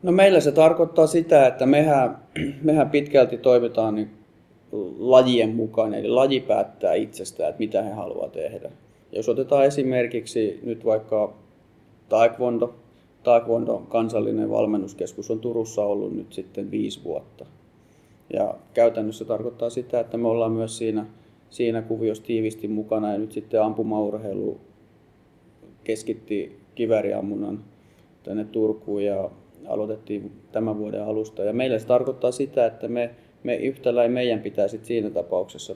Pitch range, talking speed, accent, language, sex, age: 110-130 Hz, 135 wpm, native, Finnish, male, 30-49